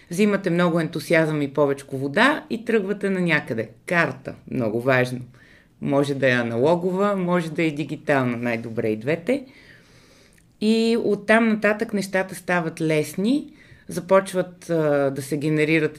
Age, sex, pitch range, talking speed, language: 30-49, female, 135-180 Hz, 130 wpm, Bulgarian